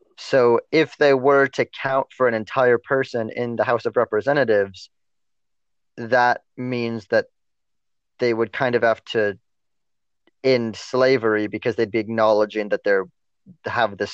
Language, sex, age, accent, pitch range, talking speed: English, male, 30-49, American, 110-135 Hz, 145 wpm